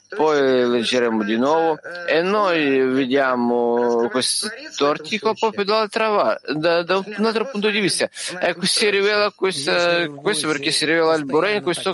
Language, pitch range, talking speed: Italian, 130-185 Hz, 155 wpm